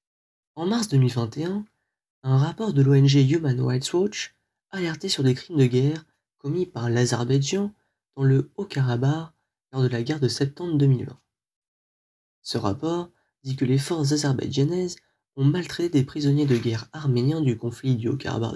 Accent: French